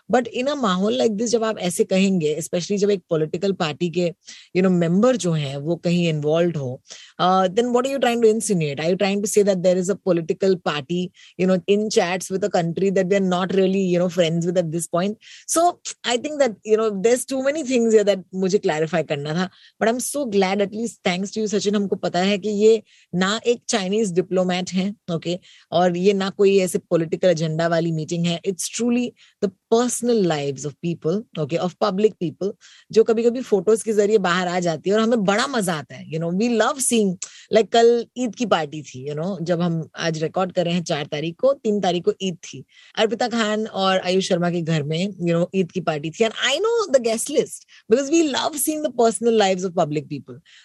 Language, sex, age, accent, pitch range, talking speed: Hindi, female, 20-39, native, 175-225 Hz, 120 wpm